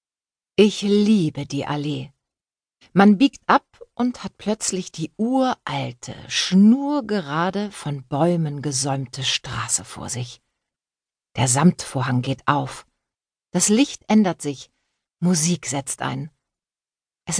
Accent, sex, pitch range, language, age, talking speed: German, female, 130-190 Hz, German, 50-69, 105 wpm